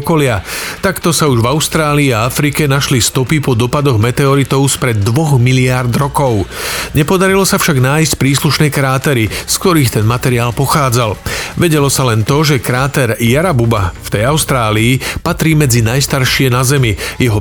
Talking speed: 150 wpm